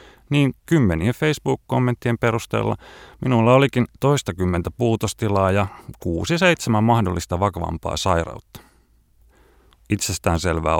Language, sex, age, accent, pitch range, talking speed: Finnish, male, 30-49, native, 85-115 Hz, 80 wpm